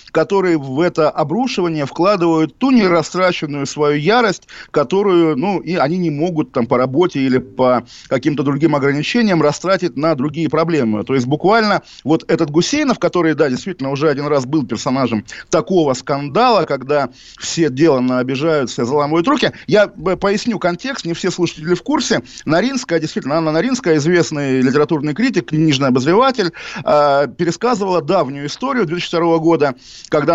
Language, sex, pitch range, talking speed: Russian, male, 145-195 Hz, 145 wpm